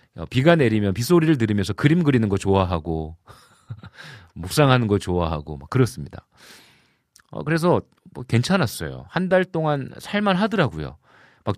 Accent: native